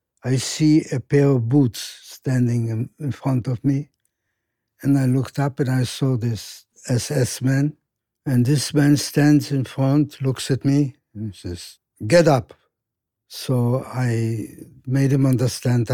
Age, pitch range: 60-79, 115-140 Hz